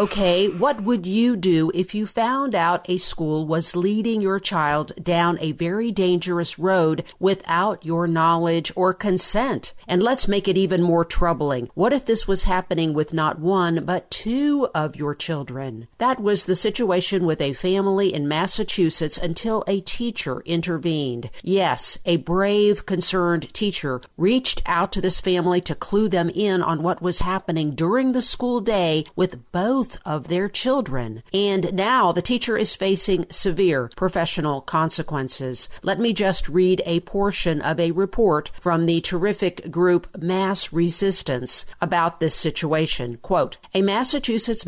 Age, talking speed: 50-69, 155 wpm